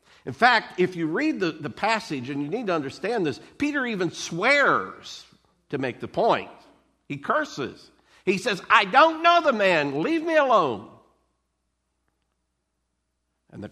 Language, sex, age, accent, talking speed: English, male, 60-79, American, 155 wpm